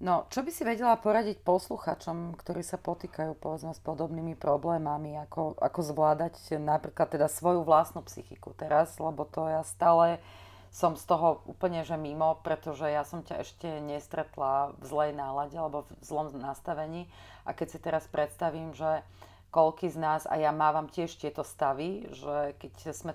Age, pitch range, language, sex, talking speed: 30-49, 145-165 Hz, Slovak, female, 165 wpm